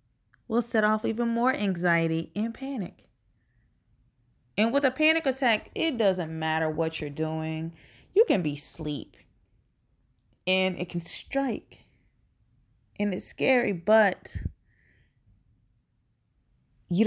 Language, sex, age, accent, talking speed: English, female, 20-39, American, 115 wpm